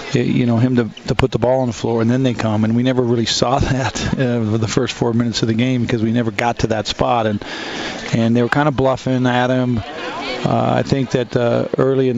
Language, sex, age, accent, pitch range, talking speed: English, male, 40-59, American, 115-130 Hz, 260 wpm